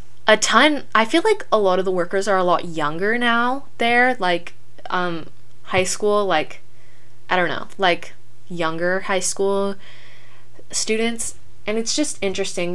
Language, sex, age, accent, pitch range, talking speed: English, female, 10-29, American, 145-200 Hz, 155 wpm